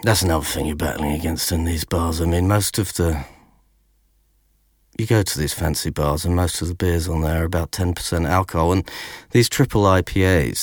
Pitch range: 75-90 Hz